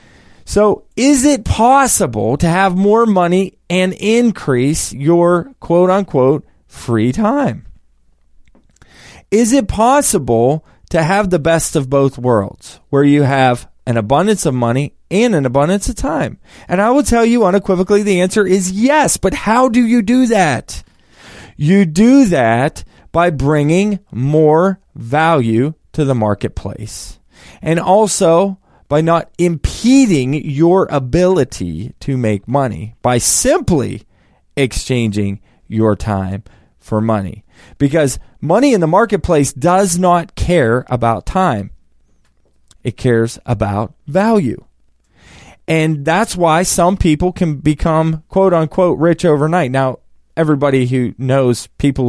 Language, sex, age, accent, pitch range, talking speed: English, male, 20-39, American, 120-180 Hz, 125 wpm